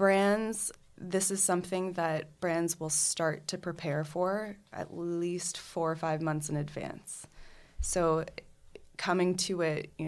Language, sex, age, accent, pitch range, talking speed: English, female, 20-39, American, 150-165 Hz, 145 wpm